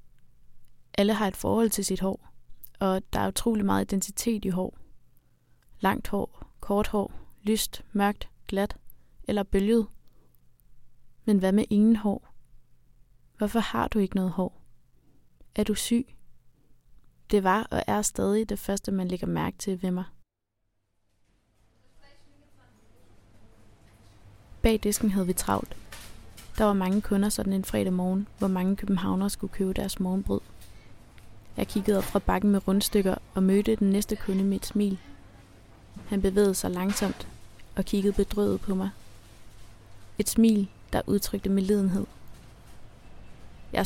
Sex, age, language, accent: female, 20-39, Danish, native